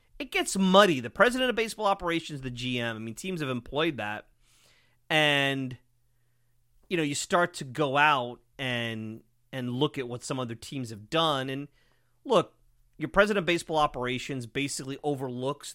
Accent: American